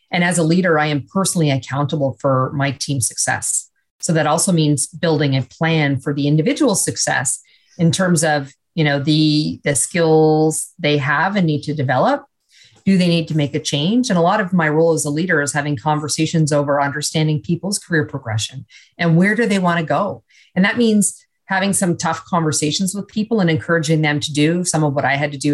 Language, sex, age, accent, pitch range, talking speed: English, female, 40-59, American, 145-175 Hz, 210 wpm